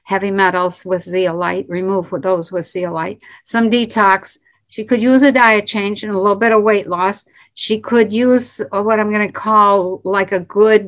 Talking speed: 190 wpm